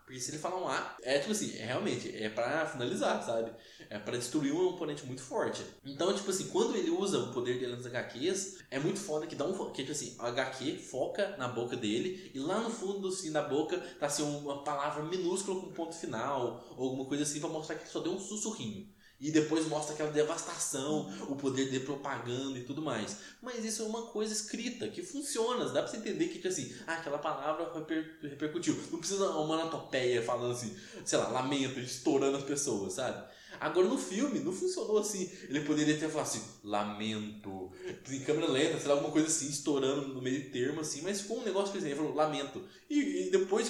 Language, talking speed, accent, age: Portuguese, 215 wpm, Brazilian, 20-39